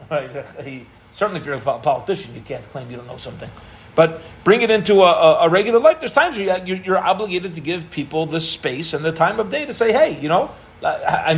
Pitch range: 150-195 Hz